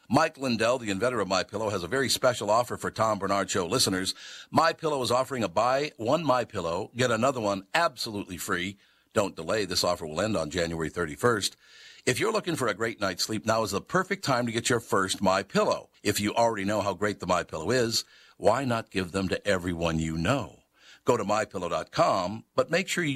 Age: 60-79